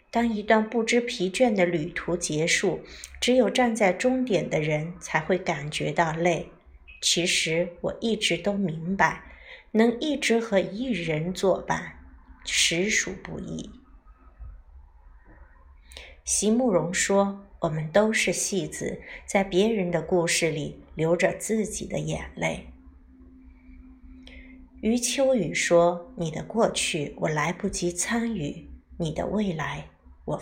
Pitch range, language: 160-225 Hz, Chinese